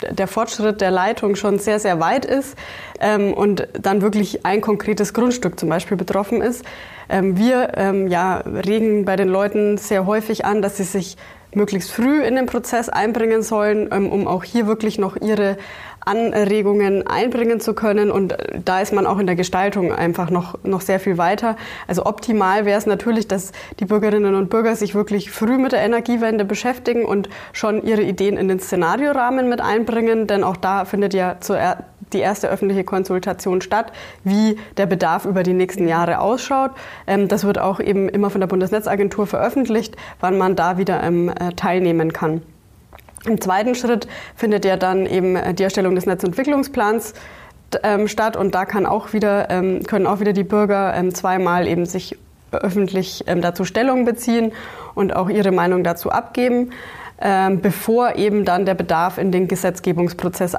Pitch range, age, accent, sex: 185-215 Hz, 20-39, German, female